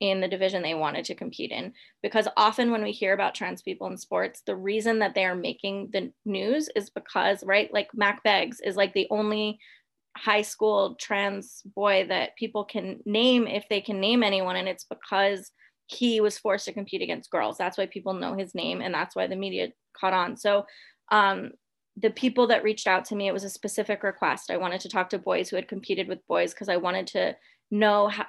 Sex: female